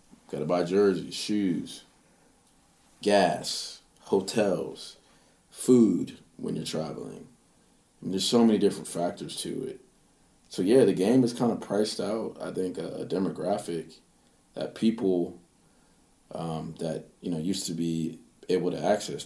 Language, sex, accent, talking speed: English, male, American, 140 wpm